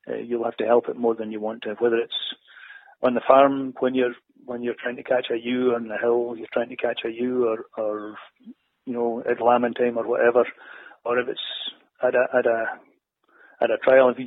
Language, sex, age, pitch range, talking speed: English, male, 40-59, 120-135 Hz, 230 wpm